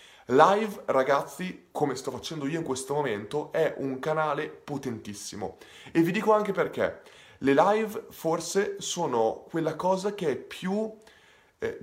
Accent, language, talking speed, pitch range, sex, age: native, Italian, 140 wpm, 135-190 Hz, male, 20-39